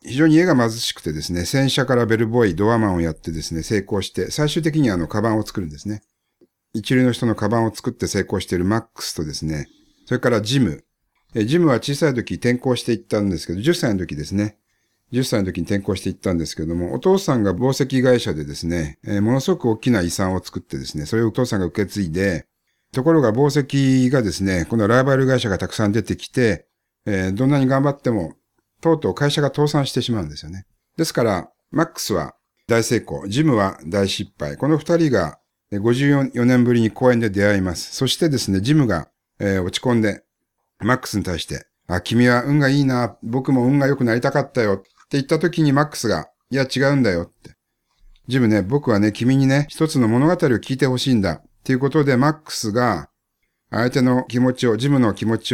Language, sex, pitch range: Japanese, male, 100-135 Hz